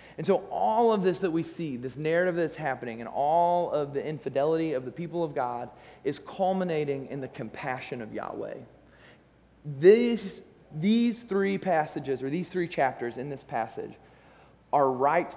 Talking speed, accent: 165 wpm, American